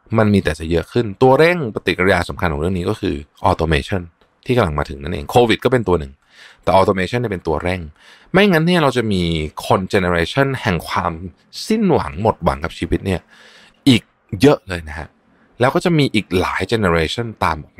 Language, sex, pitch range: Thai, male, 80-120 Hz